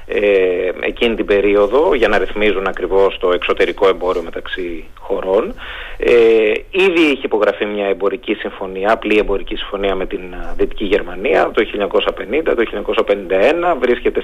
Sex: male